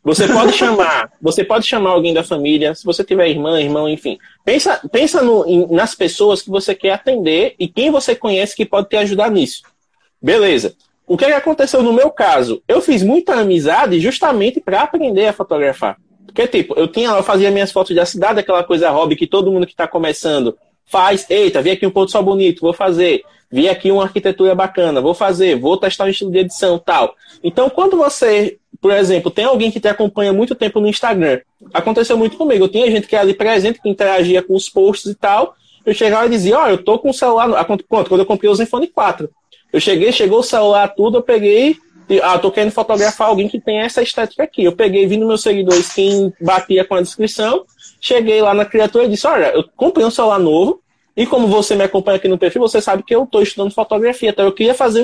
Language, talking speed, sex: Portuguese, 225 wpm, male